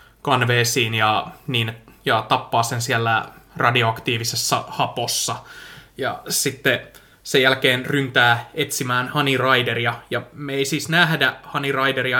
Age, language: 20-39, Finnish